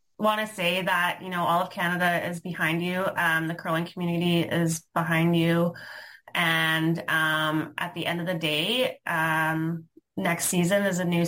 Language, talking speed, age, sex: English, 175 wpm, 20-39, female